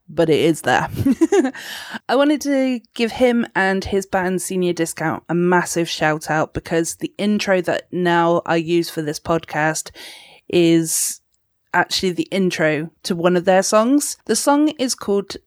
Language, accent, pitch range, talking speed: English, British, 170-230 Hz, 160 wpm